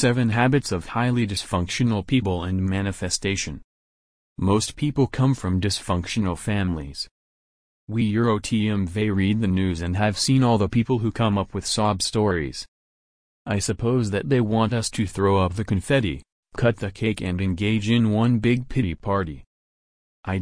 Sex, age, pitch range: male, 30-49, 90-115 Hz